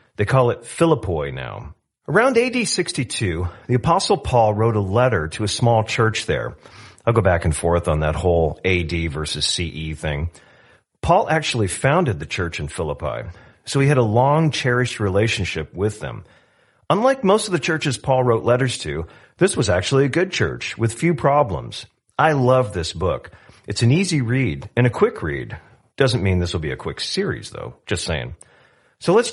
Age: 40-59